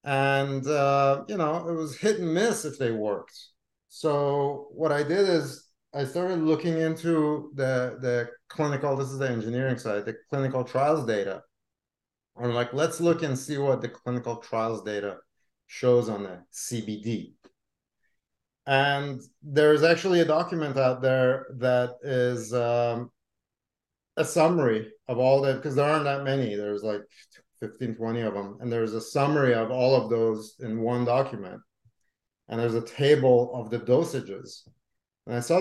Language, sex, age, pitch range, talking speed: English, male, 30-49, 120-155 Hz, 160 wpm